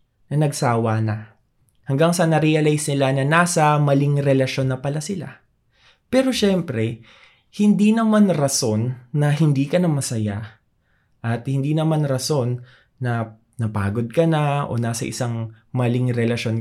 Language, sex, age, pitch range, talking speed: Filipino, male, 20-39, 125-170 Hz, 130 wpm